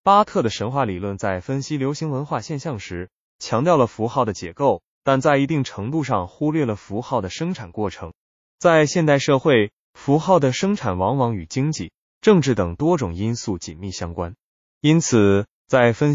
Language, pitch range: Chinese, 100-150 Hz